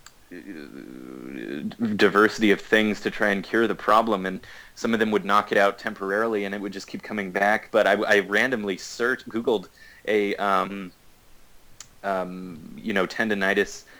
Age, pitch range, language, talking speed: 30-49, 100-115 Hz, English, 160 wpm